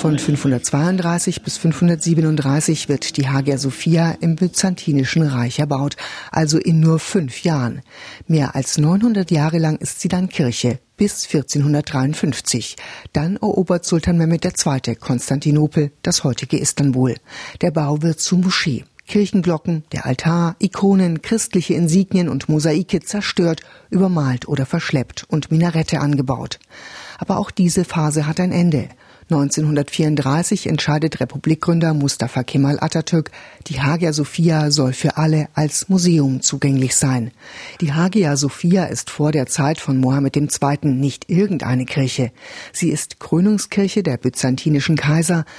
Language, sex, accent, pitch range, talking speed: German, female, German, 140-175 Hz, 130 wpm